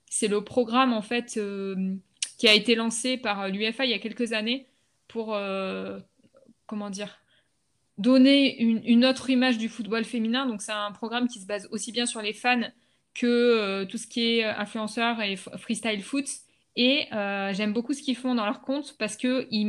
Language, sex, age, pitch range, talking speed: French, female, 20-39, 210-250 Hz, 195 wpm